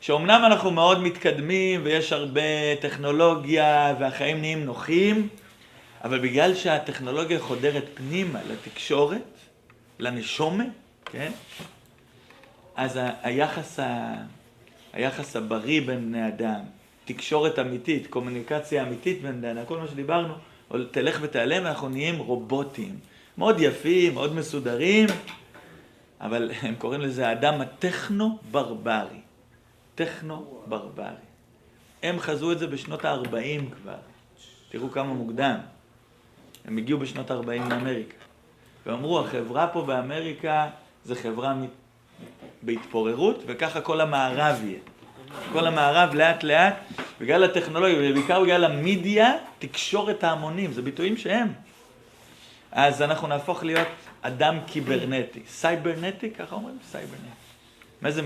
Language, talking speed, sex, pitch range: Hebrew, 110 wpm, male, 125-165 Hz